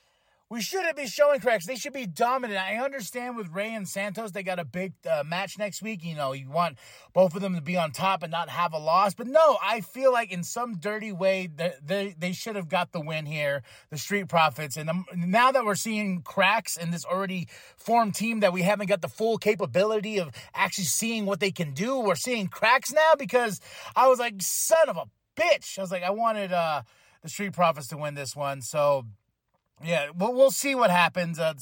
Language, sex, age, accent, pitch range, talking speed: English, male, 30-49, American, 170-215 Hz, 225 wpm